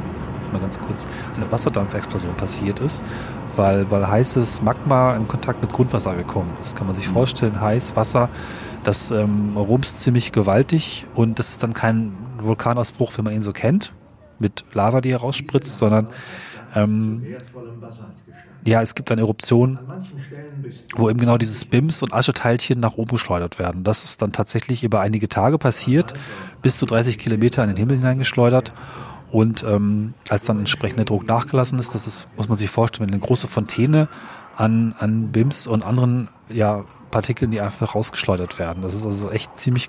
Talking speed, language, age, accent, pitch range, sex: 165 wpm, German, 30-49, German, 110-125 Hz, male